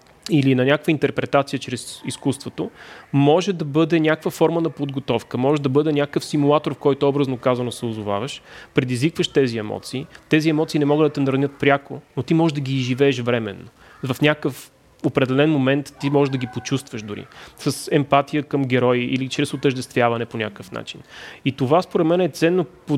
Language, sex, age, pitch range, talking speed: Bulgarian, male, 30-49, 130-155 Hz, 180 wpm